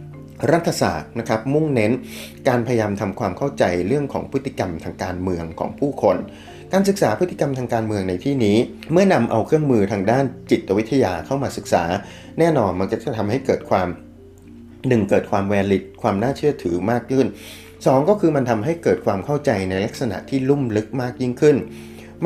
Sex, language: male, Thai